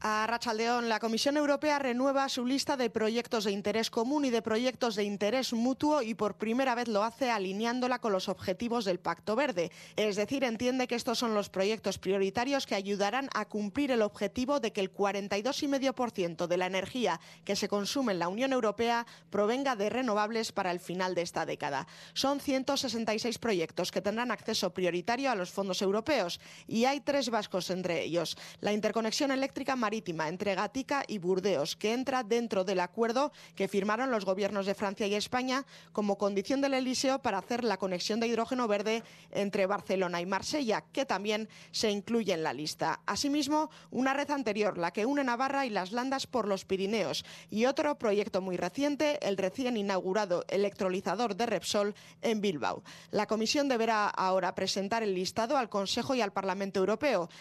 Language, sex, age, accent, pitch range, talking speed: Spanish, female, 20-39, Spanish, 195-250 Hz, 175 wpm